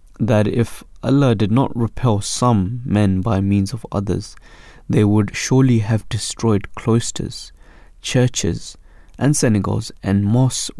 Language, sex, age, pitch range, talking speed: English, male, 20-39, 100-130 Hz, 130 wpm